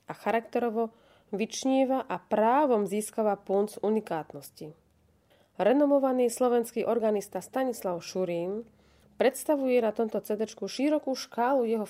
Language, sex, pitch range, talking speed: Slovak, female, 170-230 Hz, 100 wpm